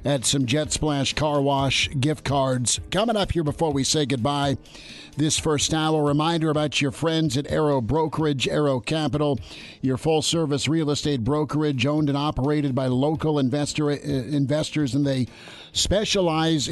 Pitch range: 130-150 Hz